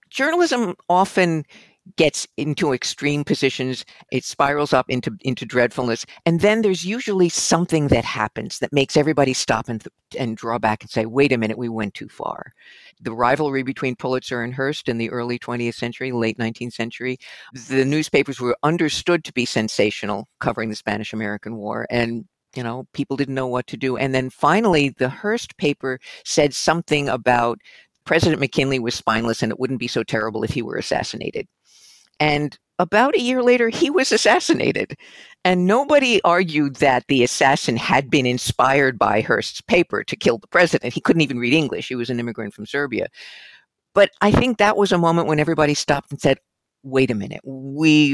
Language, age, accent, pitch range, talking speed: English, 50-69, American, 120-155 Hz, 180 wpm